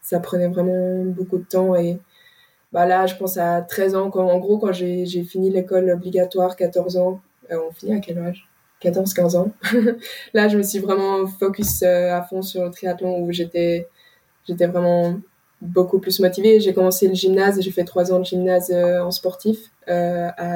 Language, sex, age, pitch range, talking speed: French, female, 20-39, 180-190 Hz, 190 wpm